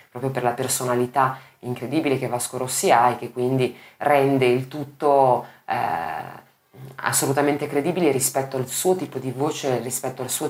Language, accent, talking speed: Italian, native, 155 wpm